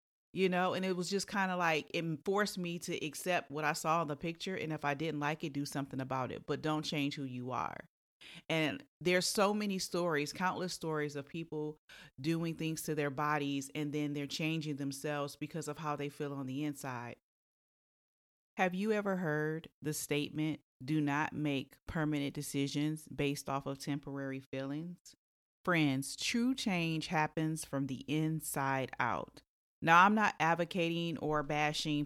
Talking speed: 175 wpm